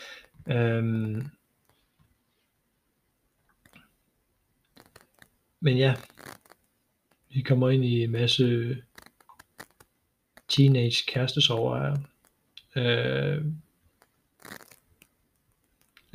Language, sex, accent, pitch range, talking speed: Danish, male, native, 125-140 Hz, 50 wpm